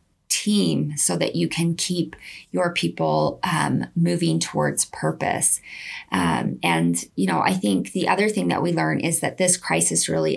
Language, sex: English, female